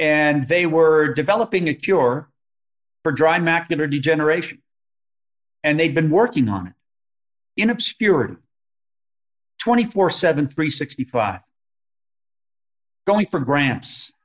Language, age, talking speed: English, 50-69, 95 wpm